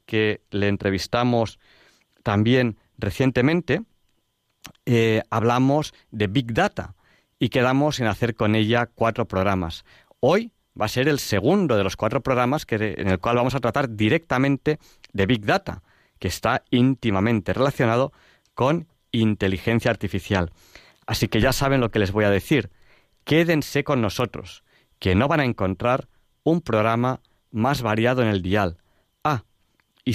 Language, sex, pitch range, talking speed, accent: Spanish, male, 100-135 Hz, 145 wpm, Spanish